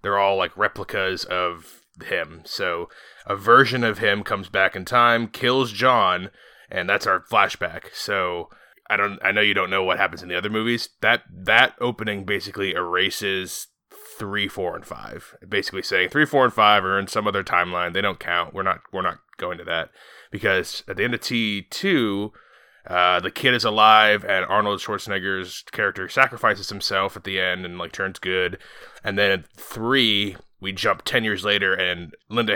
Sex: male